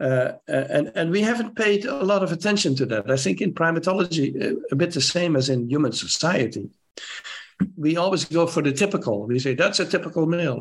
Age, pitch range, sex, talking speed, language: 60-79, 130-175 Hz, male, 205 wpm, English